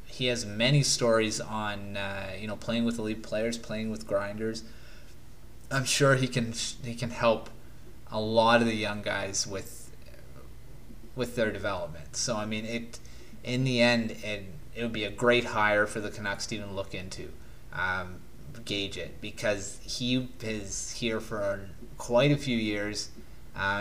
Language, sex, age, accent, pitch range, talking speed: English, male, 20-39, American, 100-120 Hz, 165 wpm